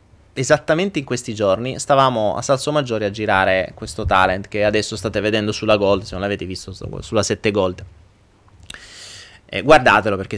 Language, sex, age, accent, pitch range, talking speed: Italian, male, 30-49, native, 105-135 Hz, 160 wpm